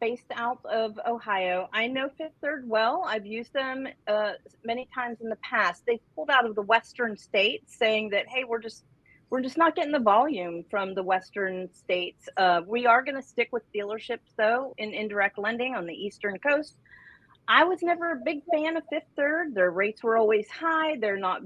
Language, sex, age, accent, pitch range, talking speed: English, female, 40-59, American, 200-260 Hz, 200 wpm